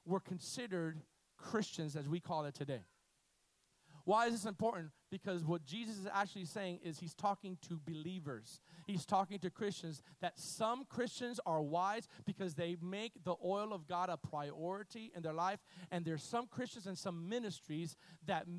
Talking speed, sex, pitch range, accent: 170 wpm, male, 175-235 Hz, American